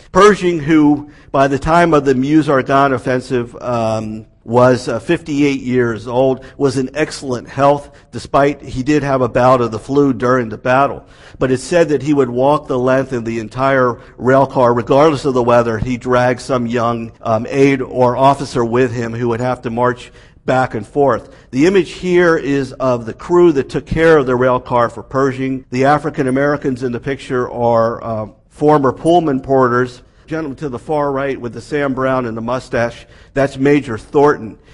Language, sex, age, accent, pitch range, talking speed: English, male, 50-69, American, 120-140 Hz, 185 wpm